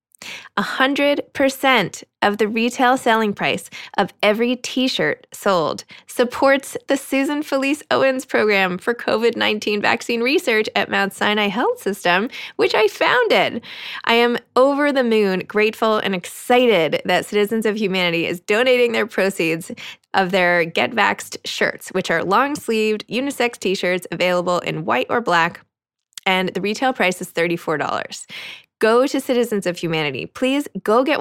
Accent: American